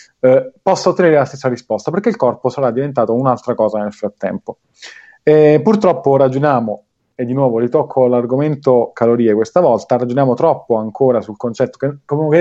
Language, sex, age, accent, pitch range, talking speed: Italian, male, 30-49, native, 115-135 Hz, 160 wpm